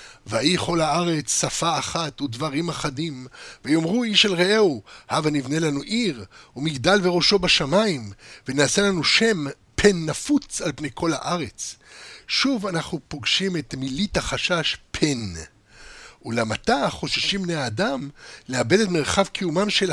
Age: 60-79